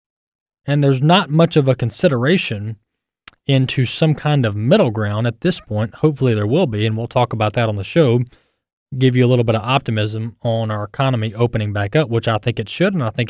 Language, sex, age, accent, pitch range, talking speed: English, male, 20-39, American, 115-150 Hz, 220 wpm